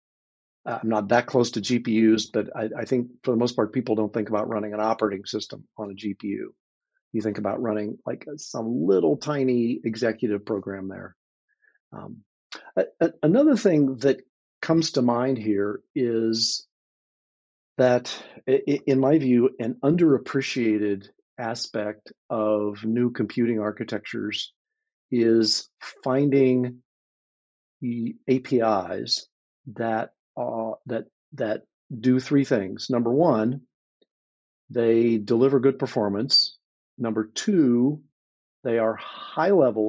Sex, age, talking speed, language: male, 50-69, 120 wpm, English